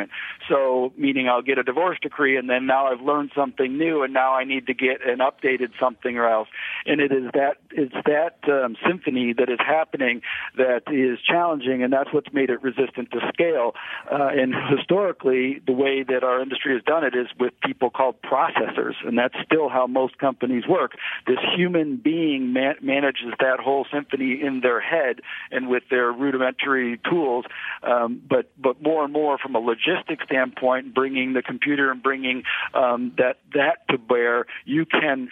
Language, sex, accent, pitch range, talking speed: English, male, American, 125-140 Hz, 180 wpm